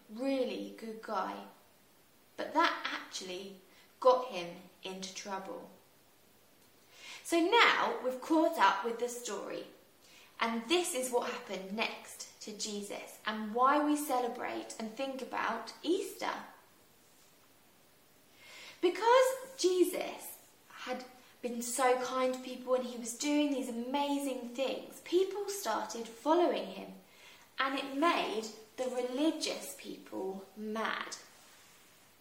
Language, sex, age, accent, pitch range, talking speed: English, female, 20-39, British, 225-305 Hz, 110 wpm